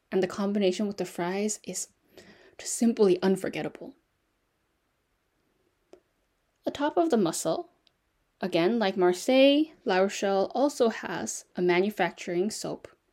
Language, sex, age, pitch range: Korean, female, 10-29, 185-260 Hz